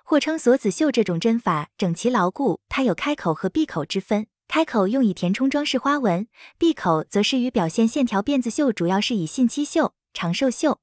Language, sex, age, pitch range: Chinese, female, 20-39, 195-280 Hz